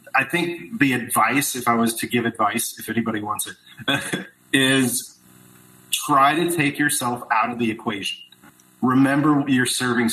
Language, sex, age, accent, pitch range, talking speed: English, male, 40-59, American, 110-140 Hz, 155 wpm